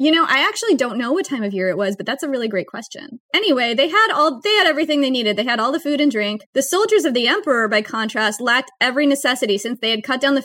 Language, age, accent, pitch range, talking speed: English, 20-39, American, 215-265 Hz, 285 wpm